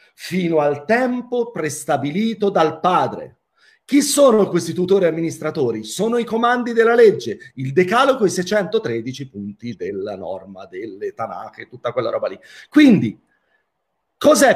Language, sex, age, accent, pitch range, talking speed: Italian, male, 40-59, native, 150-235 Hz, 130 wpm